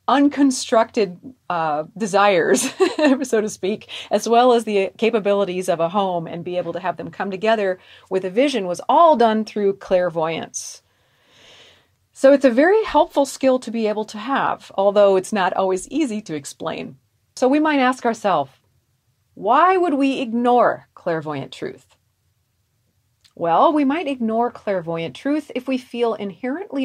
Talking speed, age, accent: 155 wpm, 40-59, American